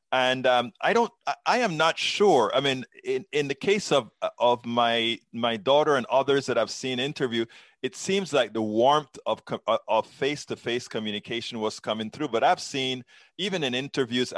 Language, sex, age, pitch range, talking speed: English, male, 30-49, 110-140 Hz, 190 wpm